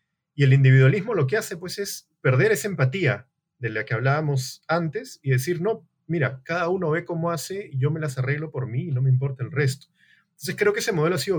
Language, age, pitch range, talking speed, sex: Spanish, 30-49, 130-180 Hz, 235 wpm, male